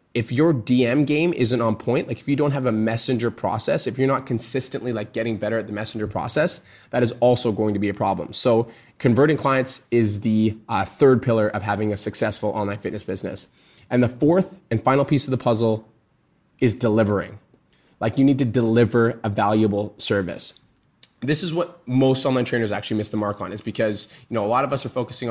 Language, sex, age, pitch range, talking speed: English, male, 20-39, 110-135 Hz, 210 wpm